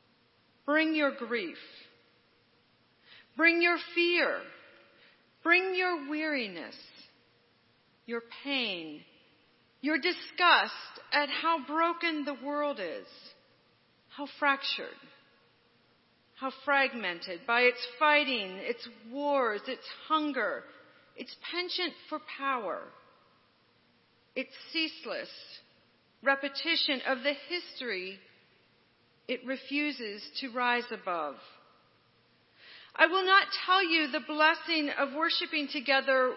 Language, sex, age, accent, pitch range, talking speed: English, female, 40-59, American, 255-320 Hz, 90 wpm